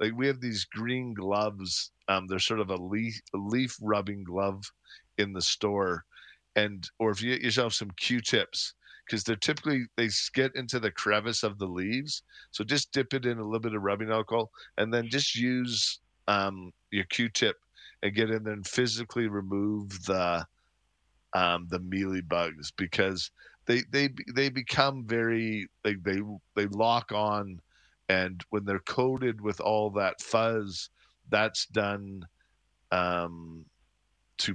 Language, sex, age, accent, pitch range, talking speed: English, male, 40-59, American, 95-115 Hz, 160 wpm